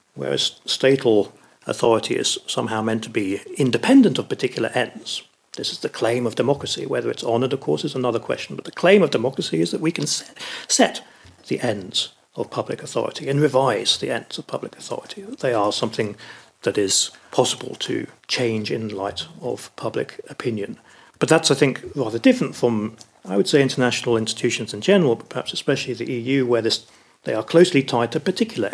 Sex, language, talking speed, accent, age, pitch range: male, English, 190 wpm, British, 40-59, 110-145 Hz